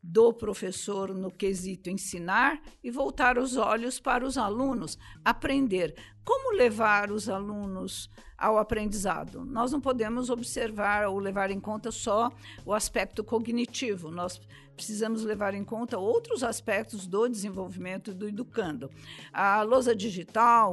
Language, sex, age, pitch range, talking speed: Portuguese, female, 50-69, 195-235 Hz, 130 wpm